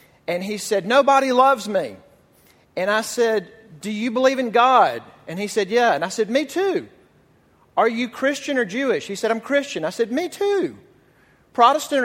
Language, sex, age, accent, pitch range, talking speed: English, male, 40-59, American, 195-270 Hz, 185 wpm